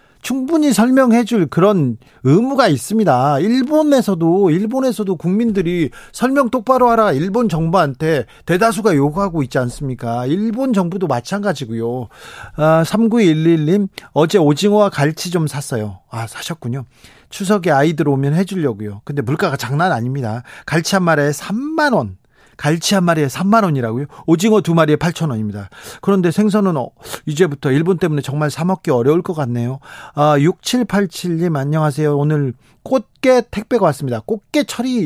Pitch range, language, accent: 135-195 Hz, Korean, native